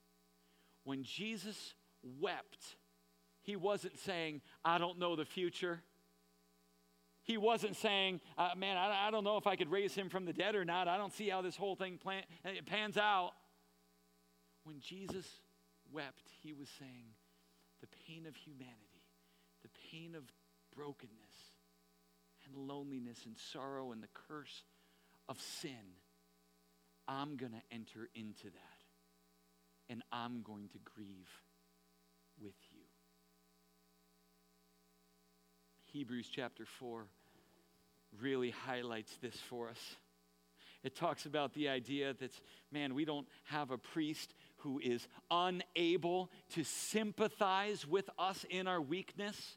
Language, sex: English, male